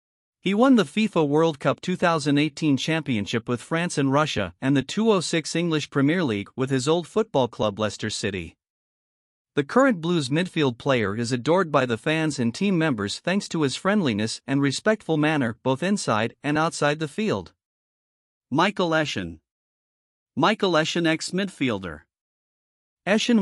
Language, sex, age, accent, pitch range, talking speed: English, male, 50-69, American, 130-170 Hz, 145 wpm